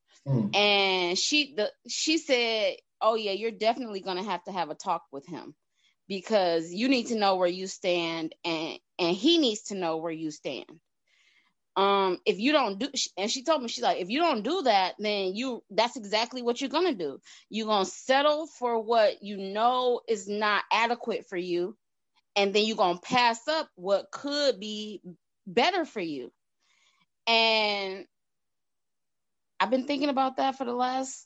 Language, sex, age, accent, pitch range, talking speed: English, female, 20-39, American, 190-265 Hz, 175 wpm